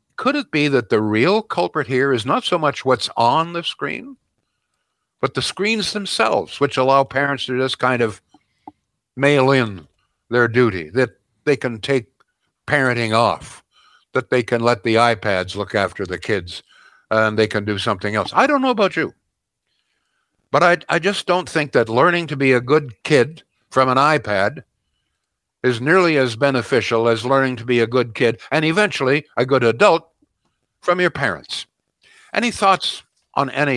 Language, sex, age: English, male, 60-79